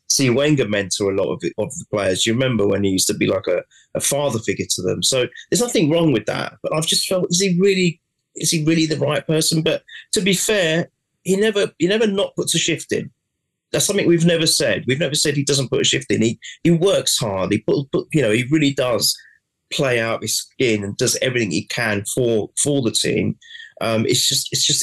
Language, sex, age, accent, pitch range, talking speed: English, male, 30-49, British, 110-160 Hz, 240 wpm